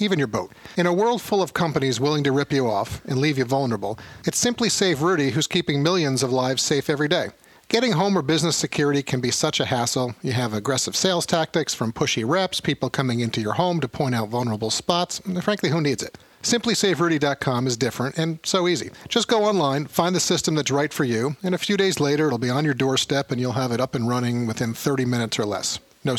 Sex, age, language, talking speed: male, 40-59, English, 235 wpm